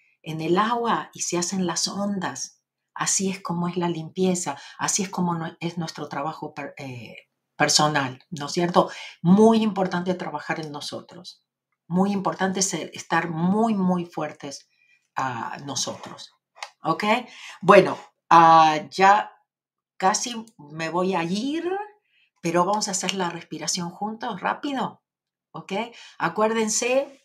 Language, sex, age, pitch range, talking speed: Spanish, female, 50-69, 160-210 Hz, 130 wpm